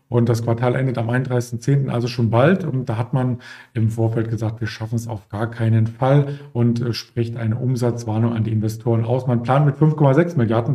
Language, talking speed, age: German, 200 wpm, 40-59